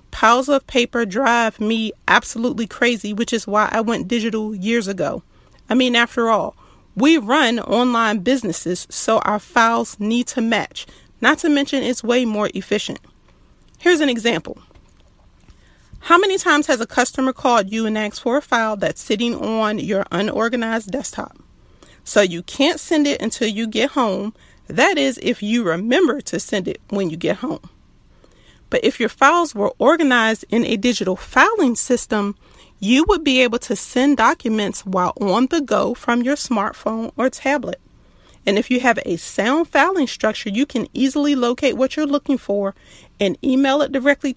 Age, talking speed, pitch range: 40-59, 170 wpm, 220-275 Hz